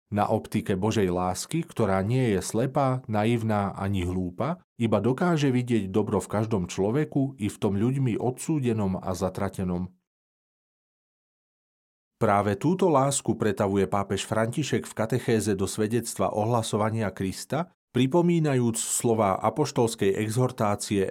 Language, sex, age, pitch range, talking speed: Slovak, male, 40-59, 100-125 Hz, 115 wpm